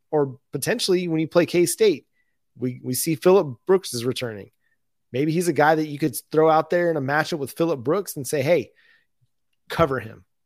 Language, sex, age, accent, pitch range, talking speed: English, male, 30-49, American, 130-170 Hz, 200 wpm